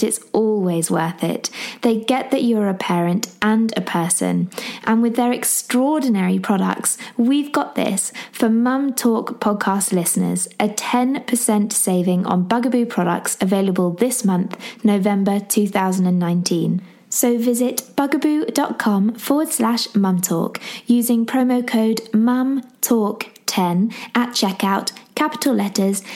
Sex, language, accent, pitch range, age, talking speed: female, English, British, 190-245 Hz, 20-39, 120 wpm